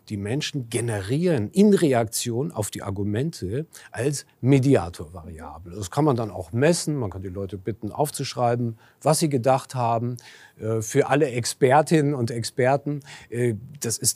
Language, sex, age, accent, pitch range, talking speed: German, male, 40-59, German, 110-145 Hz, 140 wpm